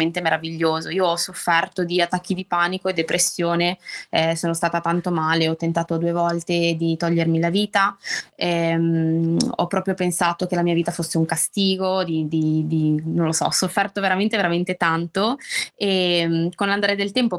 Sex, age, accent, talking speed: female, 20-39, native, 170 wpm